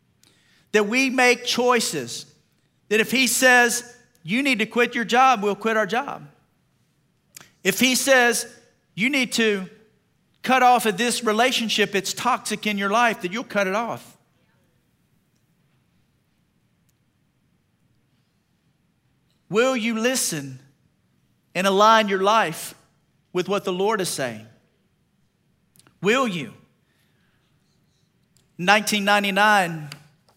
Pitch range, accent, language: 175-225 Hz, American, English